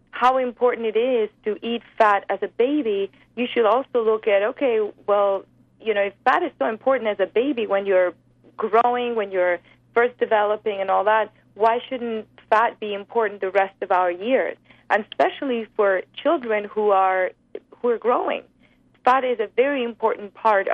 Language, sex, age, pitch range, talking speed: English, female, 30-49, 195-240 Hz, 180 wpm